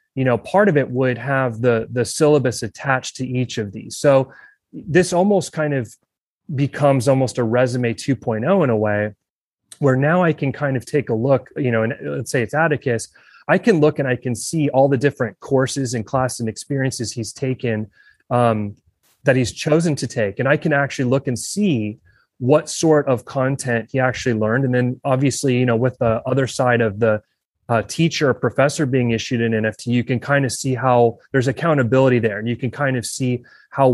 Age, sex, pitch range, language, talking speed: 30-49, male, 120-140 Hz, English, 205 wpm